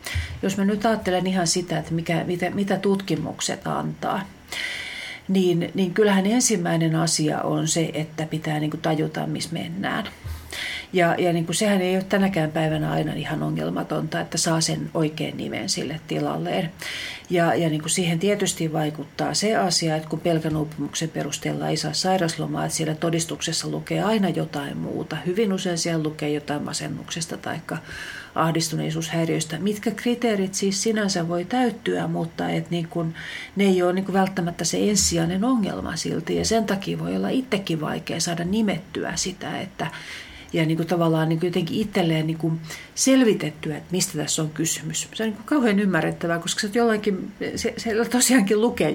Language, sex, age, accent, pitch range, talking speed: Finnish, female, 40-59, native, 155-195 Hz, 160 wpm